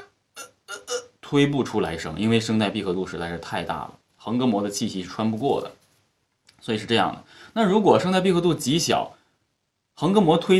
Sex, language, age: male, Chinese, 20-39